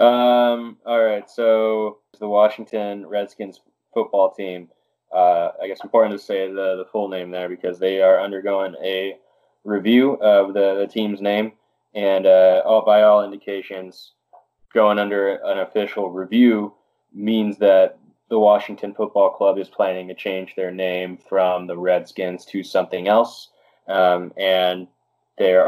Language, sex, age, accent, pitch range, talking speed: English, male, 10-29, American, 95-110 Hz, 145 wpm